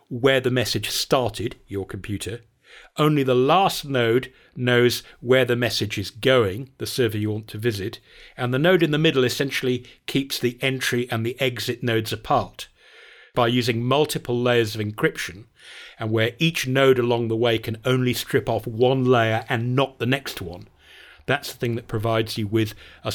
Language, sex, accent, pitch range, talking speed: English, male, British, 115-135 Hz, 180 wpm